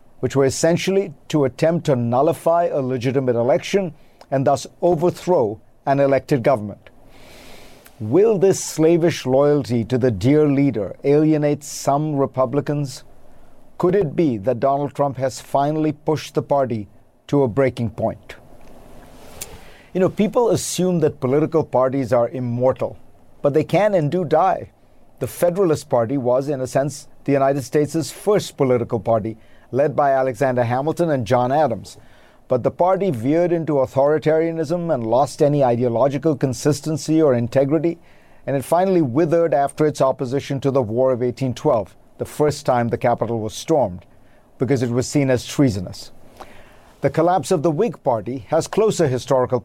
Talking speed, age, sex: 150 wpm, 50-69, male